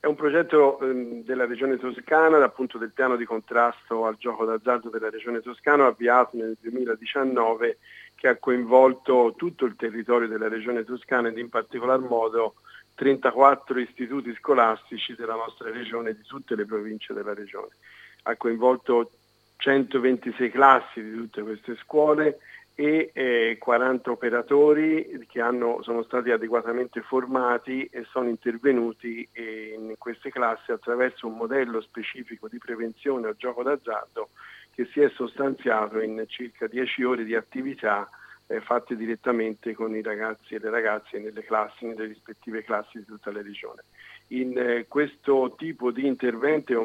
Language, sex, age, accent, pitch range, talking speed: Italian, male, 50-69, native, 115-130 Hz, 140 wpm